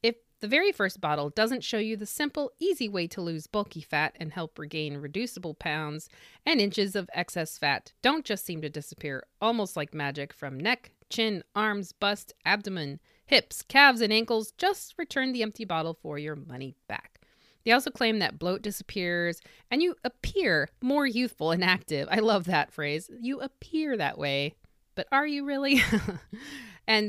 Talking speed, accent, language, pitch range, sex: 175 wpm, American, English, 155-235 Hz, female